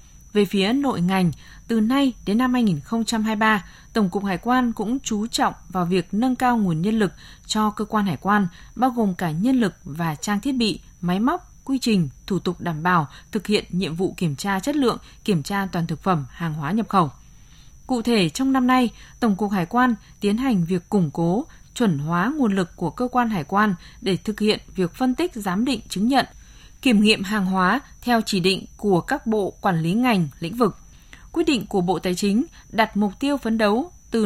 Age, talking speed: 20-39, 215 wpm